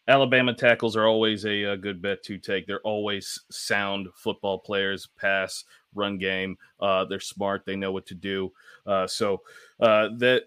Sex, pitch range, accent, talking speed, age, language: male, 100-120 Hz, American, 170 wpm, 30-49, English